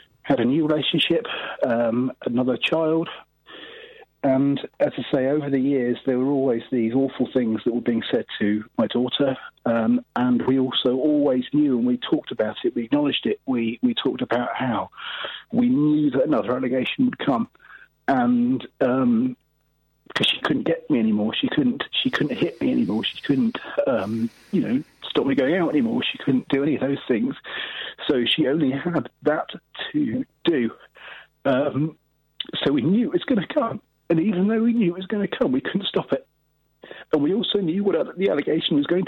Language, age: English, 40-59